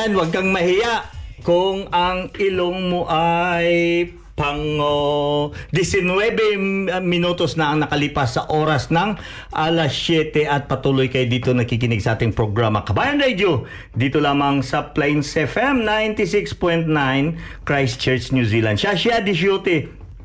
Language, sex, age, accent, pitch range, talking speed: Filipino, male, 50-69, native, 140-185 Hz, 120 wpm